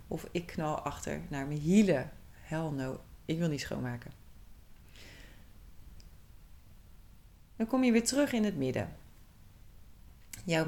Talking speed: 125 wpm